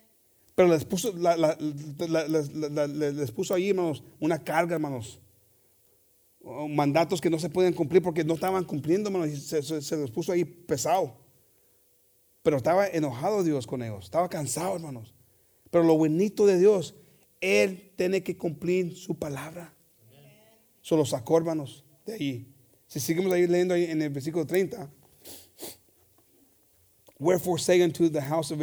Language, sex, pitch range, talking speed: English, male, 140-170 Hz, 140 wpm